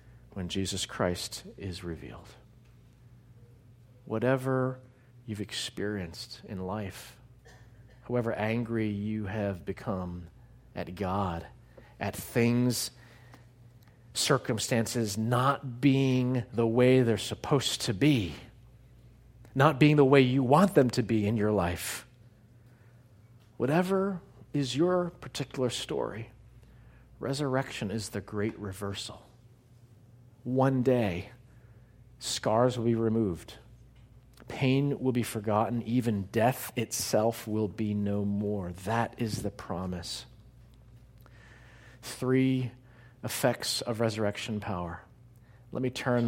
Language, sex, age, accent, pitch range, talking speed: English, male, 40-59, American, 110-125 Hz, 100 wpm